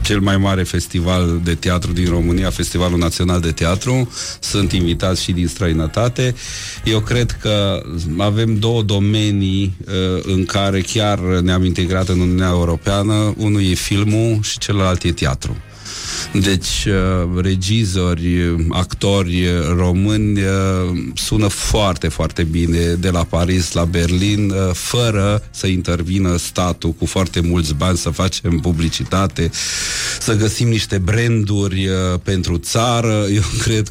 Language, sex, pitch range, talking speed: Romanian, male, 90-105 Hz, 125 wpm